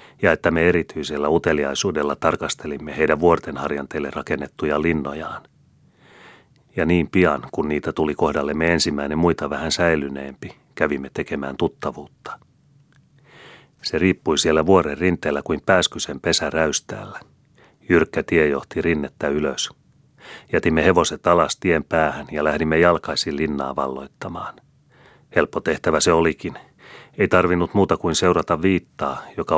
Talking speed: 120 wpm